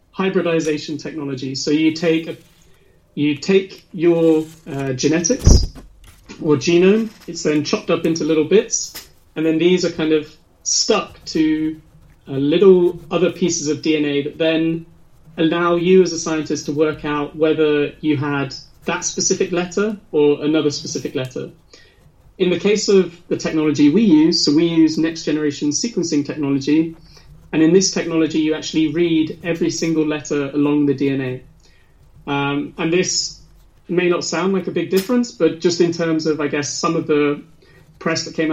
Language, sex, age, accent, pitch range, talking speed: English, male, 30-49, British, 145-170 Hz, 160 wpm